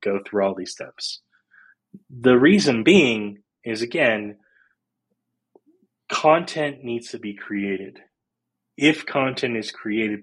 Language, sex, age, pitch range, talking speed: English, male, 20-39, 105-130 Hz, 110 wpm